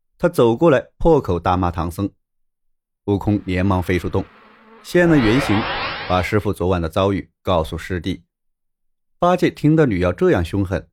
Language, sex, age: Chinese, male, 30-49